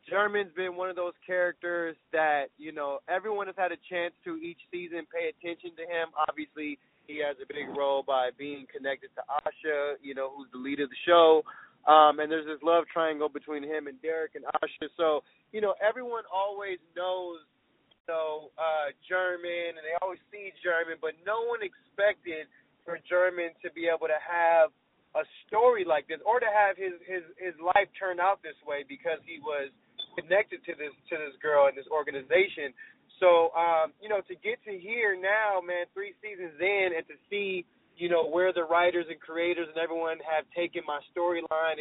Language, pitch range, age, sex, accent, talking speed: English, 155-195 Hz, 20-39, male, American, 195 wpm